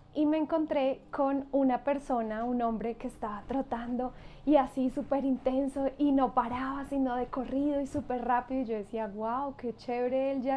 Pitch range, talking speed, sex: 245-280 Hz, 180 wpm, female